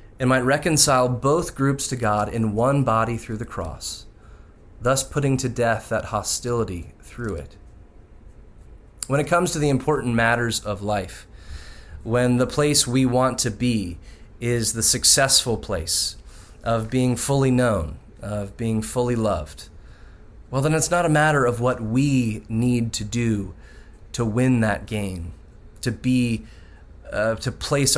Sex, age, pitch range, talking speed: male, 20-39, 100-125 Hz, 150 wpm